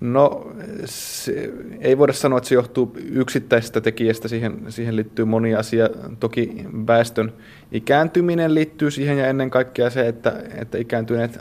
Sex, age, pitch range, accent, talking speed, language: male, 20-39, 115-125 Hz, native, 140 wpm, Finnish